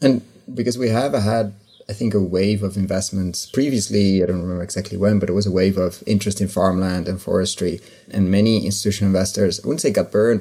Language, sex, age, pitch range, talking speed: English, male, 30-49, 95-105 Hz, 215 wpm